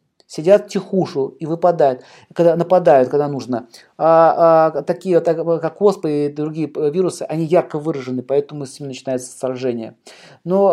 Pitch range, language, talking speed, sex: 140-175 Hz, Russian, 150 wpm, male